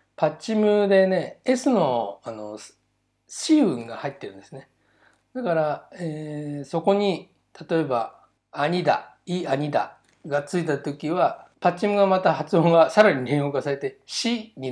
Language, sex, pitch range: Japanese, male, 120-190 Hz